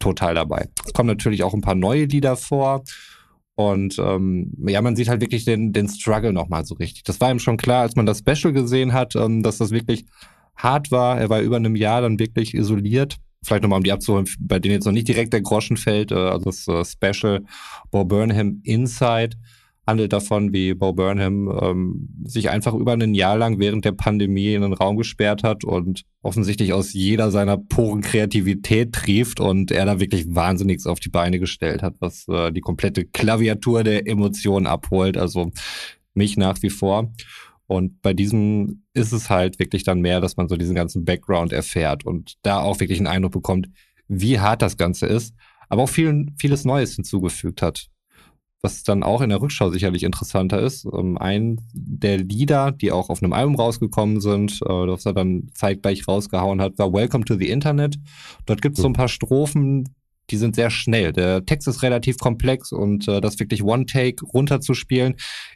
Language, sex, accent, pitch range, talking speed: German, male, German, 95-120 Hz, 190 wpm